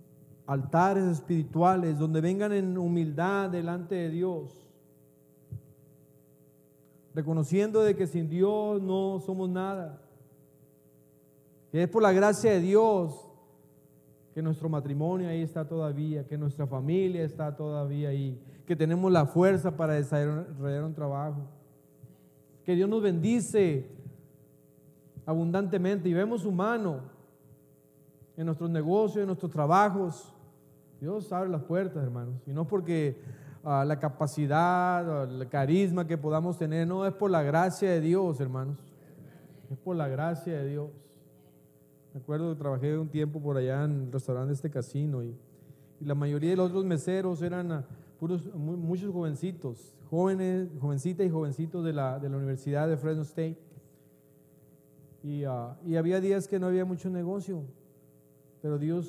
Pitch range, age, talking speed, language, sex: 140-180 Hz, 40-59, 145 wpm, Spanish, male